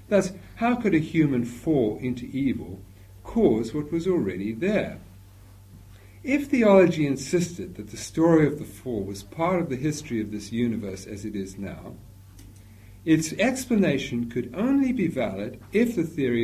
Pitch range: 100-145 Hz